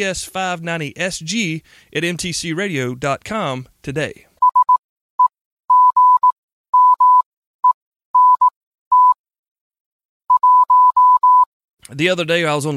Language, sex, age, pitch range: English, male, 30-49, 145-190 Hz